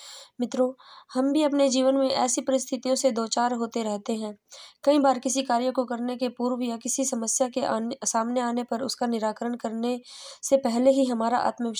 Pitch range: 225-265 Hz